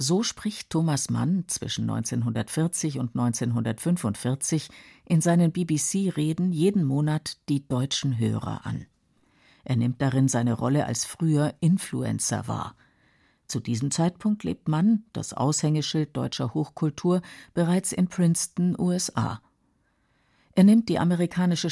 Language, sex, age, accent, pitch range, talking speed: German, female, 50-69, German, 125-165 Hz, 120 wpm